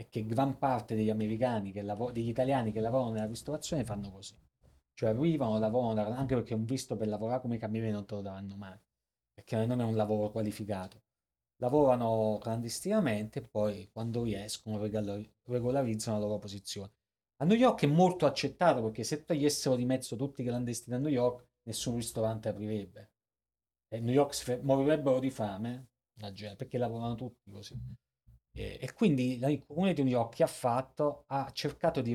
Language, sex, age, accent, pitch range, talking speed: Italian, male, 30-49, native, 105-130 Hz, 170 wpm